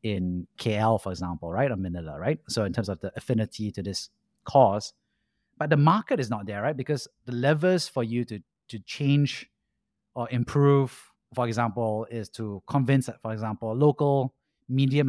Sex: male